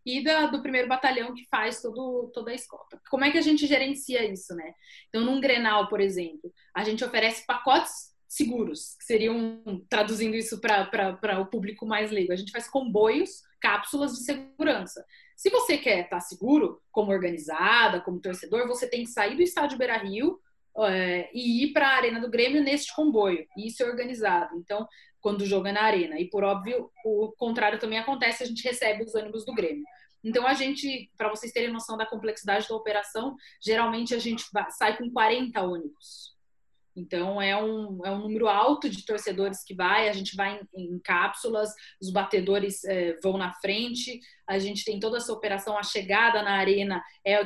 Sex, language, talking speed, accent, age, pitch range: female, Portuguese, 190 wpm, Brazilian, 20-39, 200-245 Hz